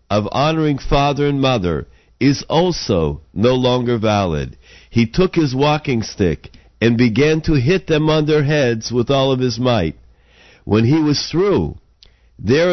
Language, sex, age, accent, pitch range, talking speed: English, male, 50-69, American, 100-150 Hz, 155 wpm